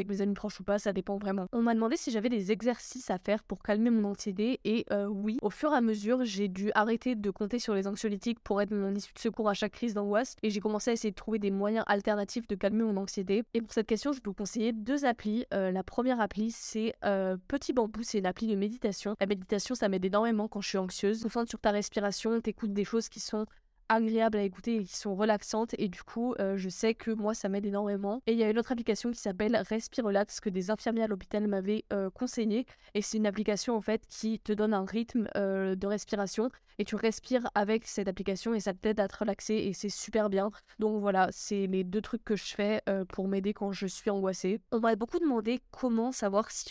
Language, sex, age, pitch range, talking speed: French, female, 10-29, 200-225 Hz, 250 wpm